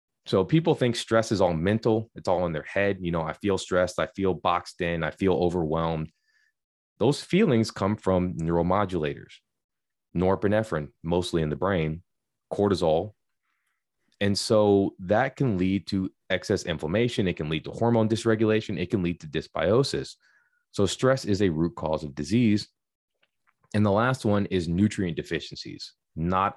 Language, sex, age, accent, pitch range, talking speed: English, male, 30-49, American, 80-105 Hz, 160 wpm